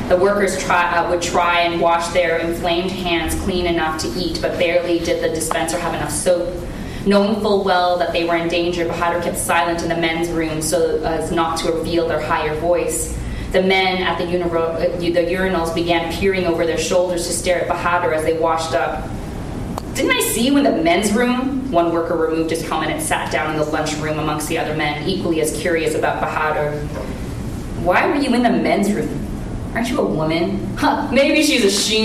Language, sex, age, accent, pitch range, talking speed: English, female, 20-39, American, 160-180 Hz, 210 wpm